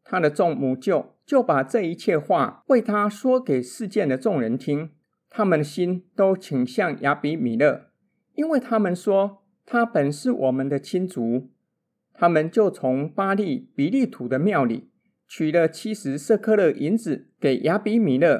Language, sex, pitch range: Chinese, male, 145-220 Hz